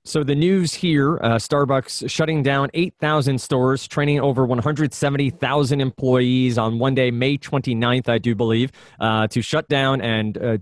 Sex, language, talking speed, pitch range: male, English, 160 wpm, 110-135 Hz